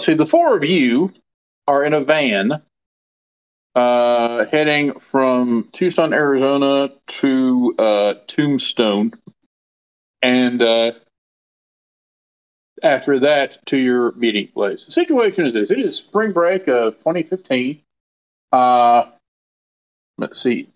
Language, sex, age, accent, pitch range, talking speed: English, male, 40-59, American, 115-145 Hz, 110 wpm